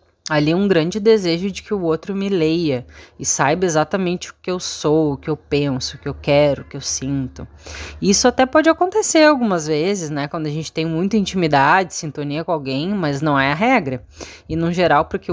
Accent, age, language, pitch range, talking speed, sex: Brazilian, 20-39, Portuguese, 145-200 Hz, 210 wpm, female